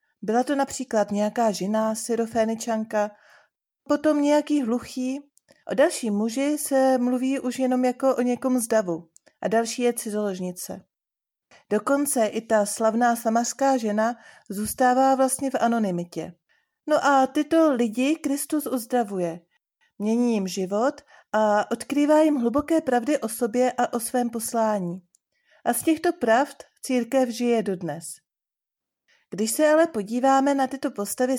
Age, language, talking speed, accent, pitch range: 40-59, Czech, 130 wpm, native, 215-270 Hz